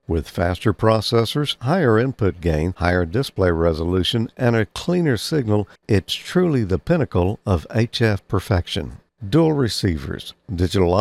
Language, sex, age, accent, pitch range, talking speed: English, male, 50-69, American, 90-125 Hz, 125 wpm